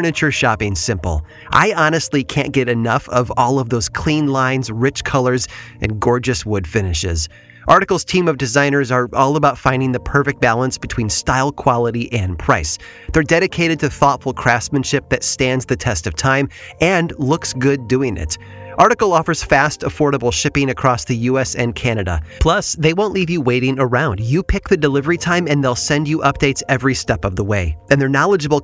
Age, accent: 30-49, American